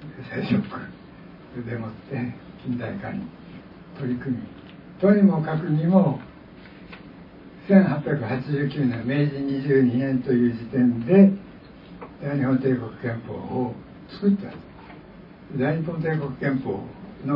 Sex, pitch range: male, 125-180 Hz